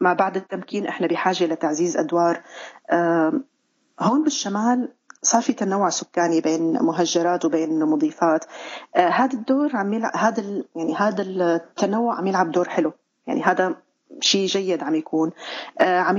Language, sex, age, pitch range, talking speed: Arabic, female, 30-49, 170-240 Hz, 135 wpm